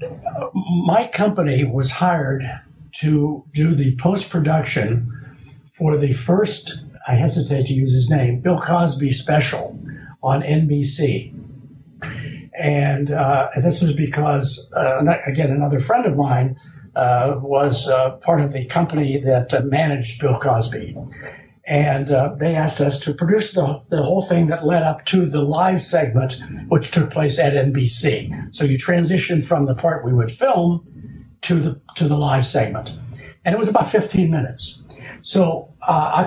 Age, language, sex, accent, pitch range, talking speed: 60-79, English, male, American, 135-165 Hz, 150 wpm